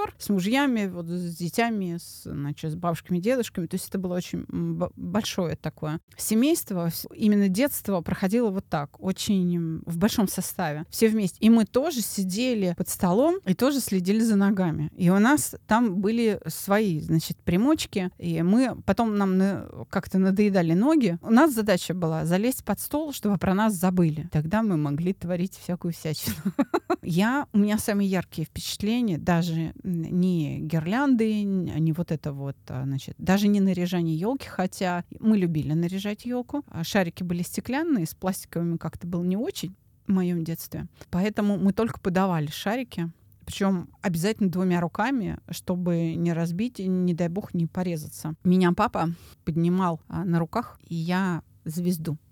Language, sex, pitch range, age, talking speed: Russian, female, 170-210 Hz, 30-49, 150 wpm